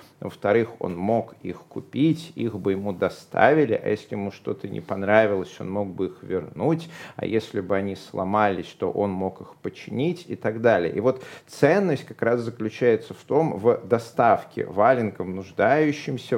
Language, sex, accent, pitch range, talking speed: Russian, male, native, 110-160 Hz, 165 wpm